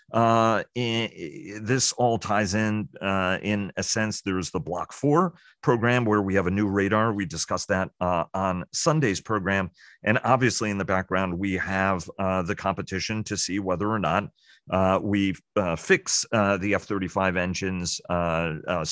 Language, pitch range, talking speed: English, 90-110 Hz, 165 wpm